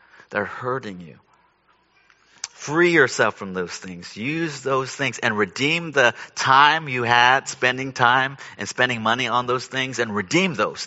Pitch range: 125-155 Hz